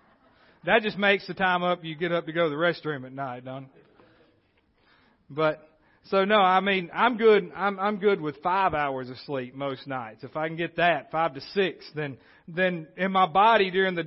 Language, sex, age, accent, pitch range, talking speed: English, male, 40-59, American, 150-195 Hz, 215 wpm